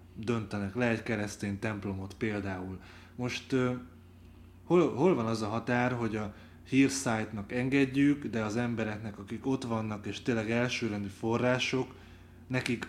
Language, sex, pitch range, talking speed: Hungarian, male, 105-125 Hz, 125 wpm